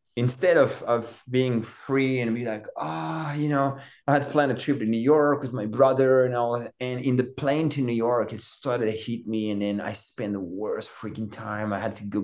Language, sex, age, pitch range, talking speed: English, male, 30-49, 110-140 Hz, 240 wpm